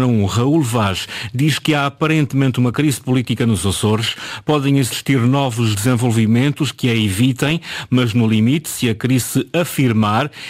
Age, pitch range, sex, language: 50-69, 110-135 Hz, male, Portuguese